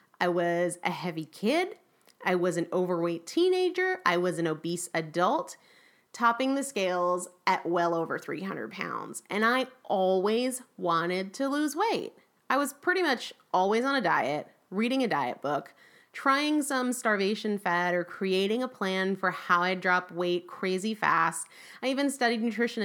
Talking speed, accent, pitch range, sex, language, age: 160 wpm, American, 180-240 Hz, female, English, 30-49